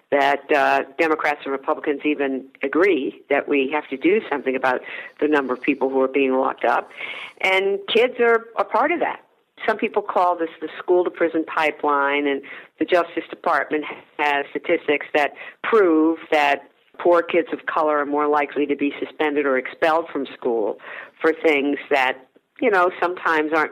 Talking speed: 170 wpm